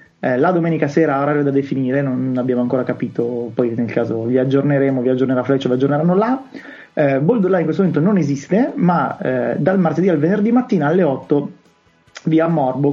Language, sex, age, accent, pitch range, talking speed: Italian, male, 20-39, native, 130-165 Hz, 180 wpm